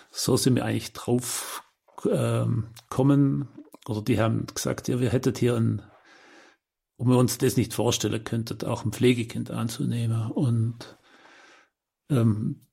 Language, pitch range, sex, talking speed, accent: German, 115-140 Hz, male, 140 wpm, German